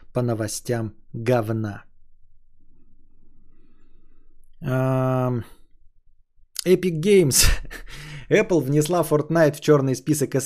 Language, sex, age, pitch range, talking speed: Bulgarian, male, 20-39, 120-150 Hz, 75 wpm